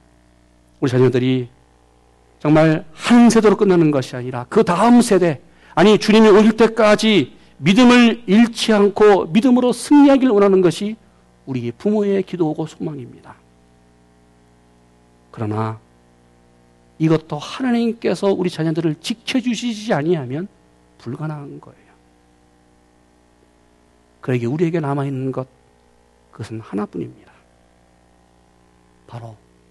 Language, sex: Korean, male